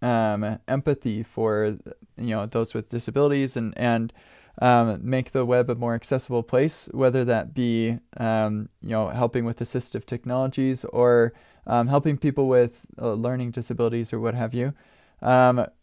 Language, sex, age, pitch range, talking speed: English, male, 20-39, 115-135 Hz, 155 wpm